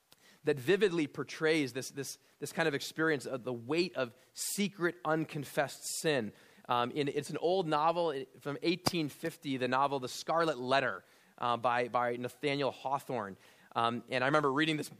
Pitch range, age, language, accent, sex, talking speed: 130-160 Hz, 30-49, English, American, male, 160 wpm